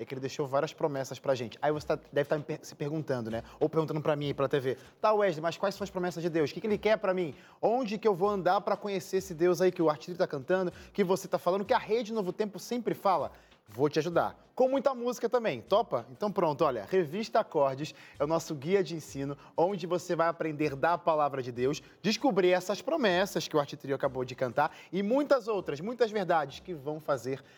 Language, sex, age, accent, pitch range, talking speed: Portuguese, male, 20-39, Brazilian, 150-195 Hz, 240 wpm